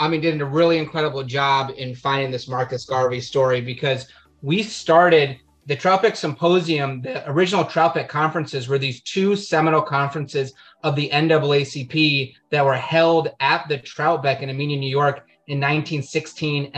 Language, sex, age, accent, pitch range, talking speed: English, male, 30-49, American, 140-170 Hz, 155 wpm